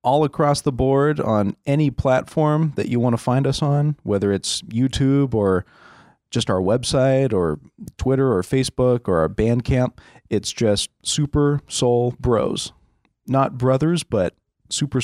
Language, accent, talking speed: English, American, 150 wpm